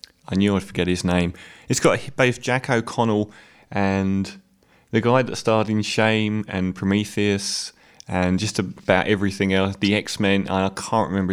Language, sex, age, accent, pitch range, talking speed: English, male, 20-39, British, 90-105 Hz, 160 wpm